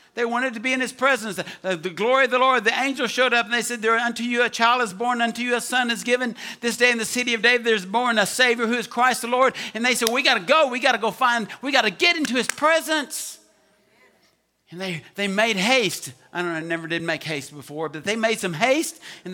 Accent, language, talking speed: American, English, 275 wpm